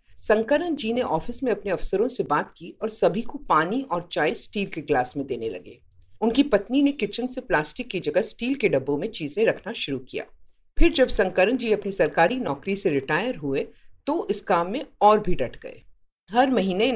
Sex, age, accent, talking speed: female, 50-69, native, 205 wpm